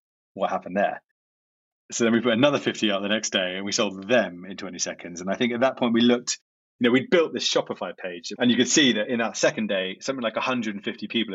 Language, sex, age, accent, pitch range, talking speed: English, male, 30-49, British, 100-125 Hz, 255 wpm